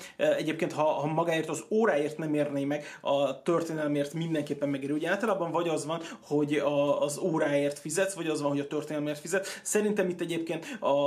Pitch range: 145-170 Hz